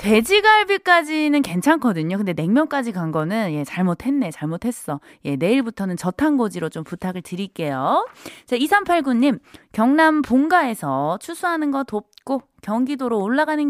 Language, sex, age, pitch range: Korean, female, 20-39, 180-290 Hz